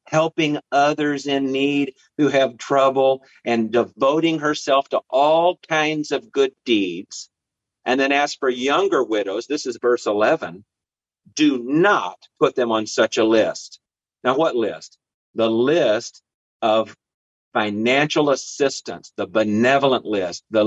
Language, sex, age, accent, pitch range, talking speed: English, male, 50-69, American, 115-145 Hz, 135 wpm